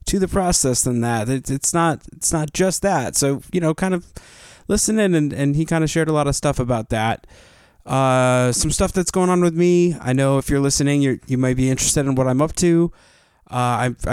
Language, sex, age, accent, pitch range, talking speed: English, male, 20-39, American, 120-145 Hz, 225 wpm